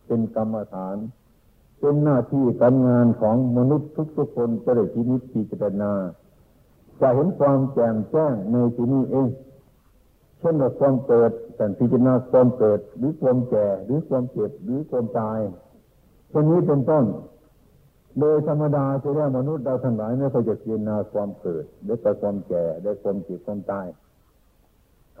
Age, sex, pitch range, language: 60-79, male, 105-135 Hz, Thai